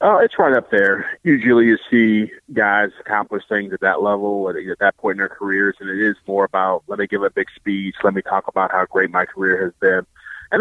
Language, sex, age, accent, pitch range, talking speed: English, male, 30-49, American, 100-115 Hz, 250 wpm